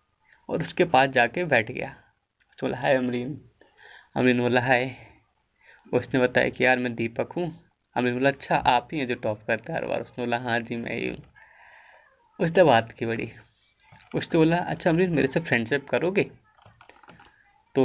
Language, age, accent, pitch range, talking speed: Hindi, 20-39, native, 120-150 Hz, 175 wpm